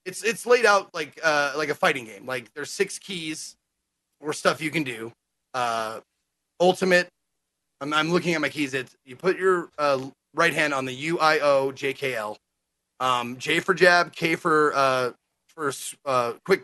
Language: English